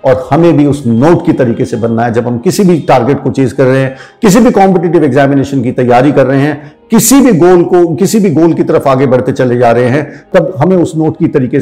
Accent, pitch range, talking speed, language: native, 130-170 Hz, 260 wpm, Hindi